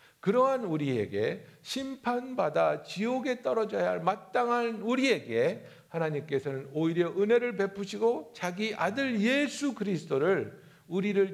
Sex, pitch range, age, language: male, 160-245 Hz, 60-79, Korean